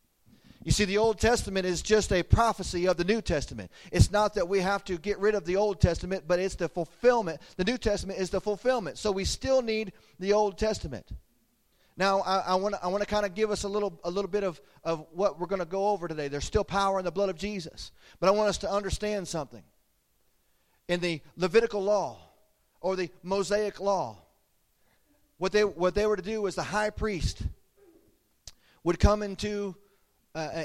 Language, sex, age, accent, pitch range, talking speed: English, male, 40-59, American, 175-210 Hz, 205 wpm